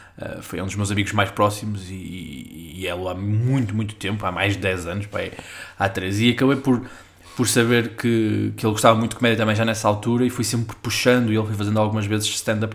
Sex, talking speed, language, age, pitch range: male, 240 wpm, Portuguese, 20-39, 100-115 Hz